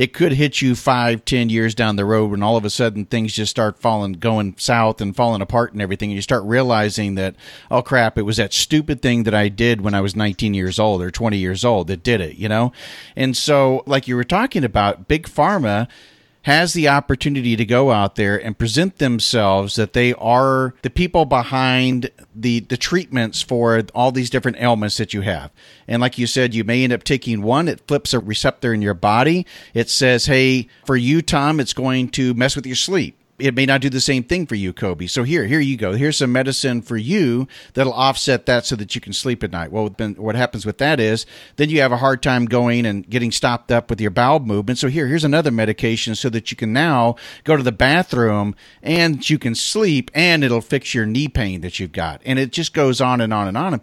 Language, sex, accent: English, male, American